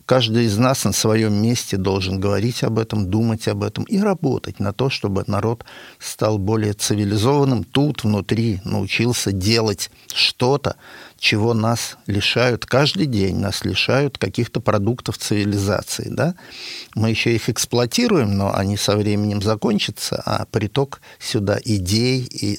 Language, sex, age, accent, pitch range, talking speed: Russian, male, 50-69, native, 105-130 Hz, 135 wpm